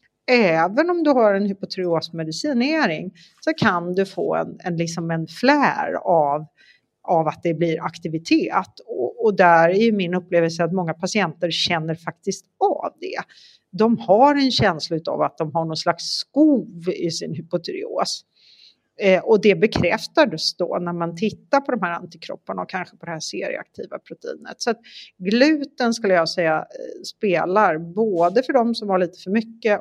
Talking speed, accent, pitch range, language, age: 165 wpm, native, 170-230 Hz, Swedish, 40-59